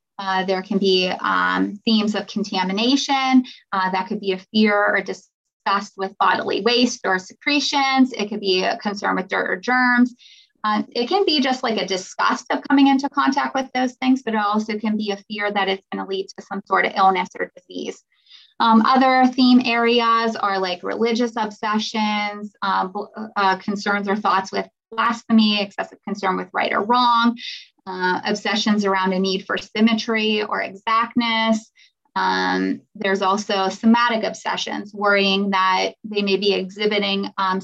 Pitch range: 195-235 Hz